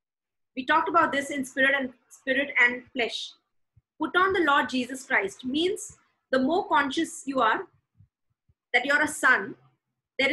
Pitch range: 260-330 Hz